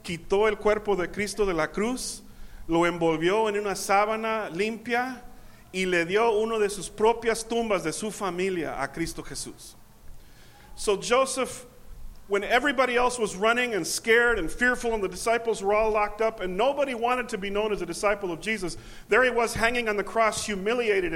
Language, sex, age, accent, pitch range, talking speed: English, male, 40-59, American, 175-225 Hz, 185 wpm